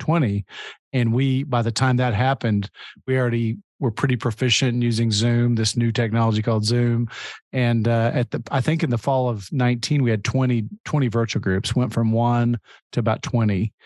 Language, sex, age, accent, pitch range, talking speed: English, male, 40-59, American, 110-125 Hz, 185 wpm